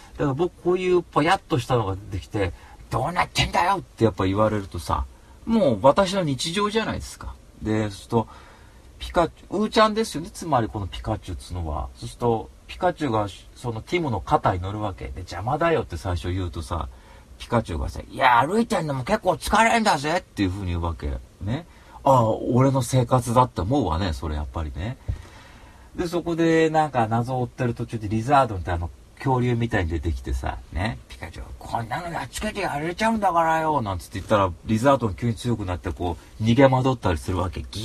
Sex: male